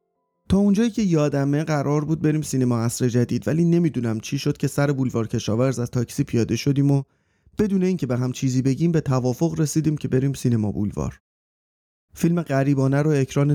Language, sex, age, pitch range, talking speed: Persian, male, 30-49, 120-150 Hz, 175 wpm